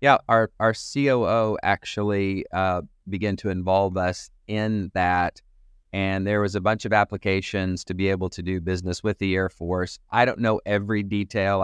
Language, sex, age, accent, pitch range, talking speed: English, male, 30-49, American, 90-105 Hz, 175 wpm